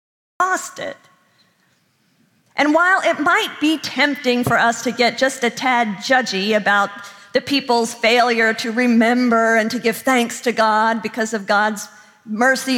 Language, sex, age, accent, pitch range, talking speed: English, female, 50-69, American, 210-275 Hz, 140 wpm